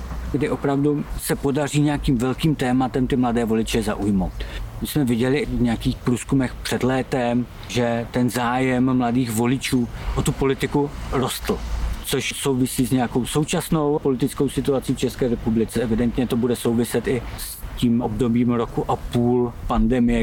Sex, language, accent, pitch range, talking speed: male, Czech, native, 115-140 Hz, 150 wpm